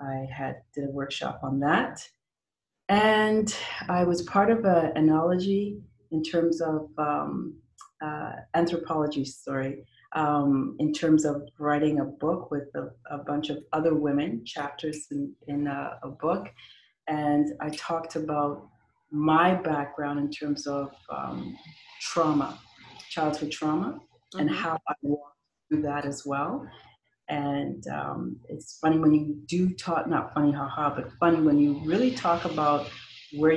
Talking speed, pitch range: 140 wpm, 145-165 Hz